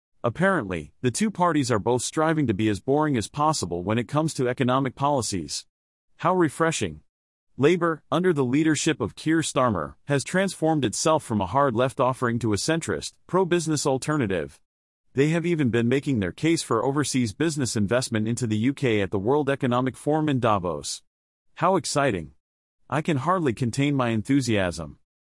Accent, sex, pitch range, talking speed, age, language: American, male, 110-155 Hz, 165 wpm, 40-59, English